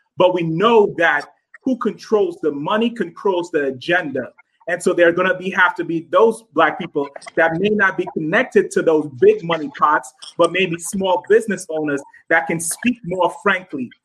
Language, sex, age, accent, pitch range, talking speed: English, male, 30-49, American, 165-205 Hz, 185 wpm